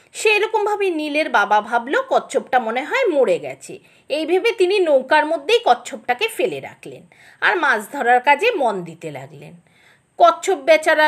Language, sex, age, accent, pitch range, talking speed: English, female, 50-69, Indian, 260-380 Hz, 135 wpm